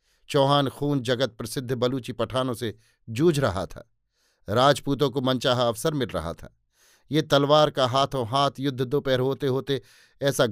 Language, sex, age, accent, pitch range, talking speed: Hindi, male, 50-69, native, 125-145 Hz, 155 wpm